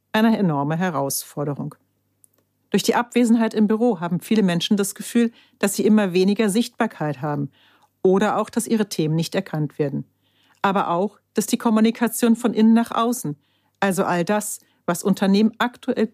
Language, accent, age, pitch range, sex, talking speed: German, German, 60-79, 170-230 Hz, female, 155 wpm